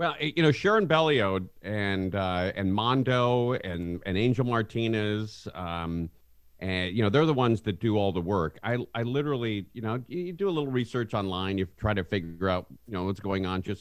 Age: 50-69